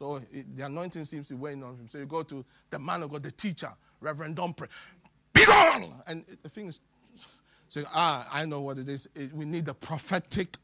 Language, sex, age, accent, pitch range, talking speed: English, male, 50-69, Nigerian, 150-210 Hz, 215 wpm